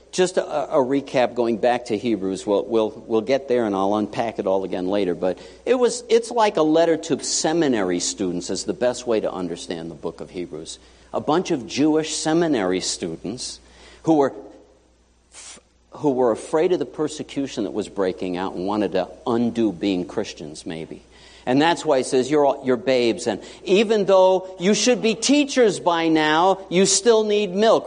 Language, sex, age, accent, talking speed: English, male, 60-79, American, 185 wpm